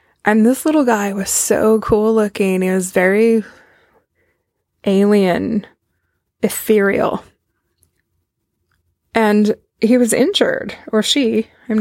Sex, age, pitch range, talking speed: female, 20-39, 190-230 Hz, 100 wpm